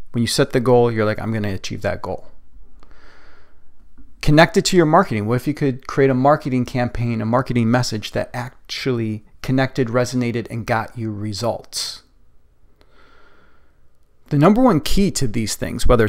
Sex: male